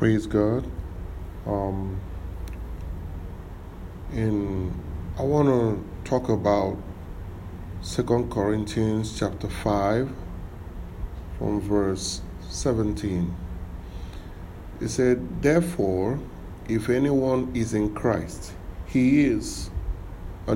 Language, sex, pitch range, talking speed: English, male, 90-110 Hz, 75 wpm